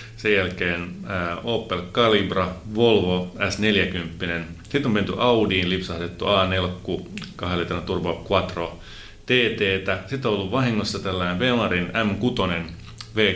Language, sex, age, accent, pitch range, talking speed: Finnish, male, 30-49, native, 85-110 Hz, 85 wpm